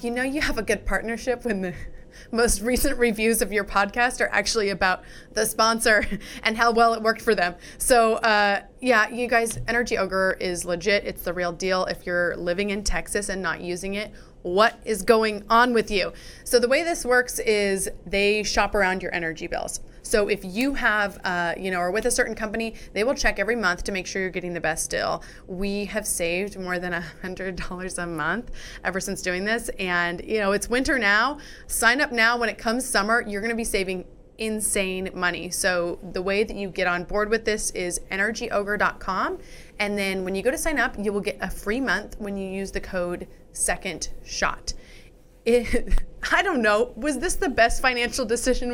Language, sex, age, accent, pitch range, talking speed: English, female, 20-39, American, 185-235 Hz, 205 wpm